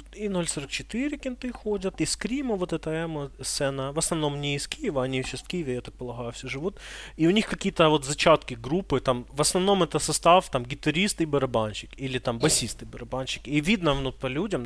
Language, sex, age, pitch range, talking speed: Ukrainian, male, 20-39, 125-160 Hz, 205 wpm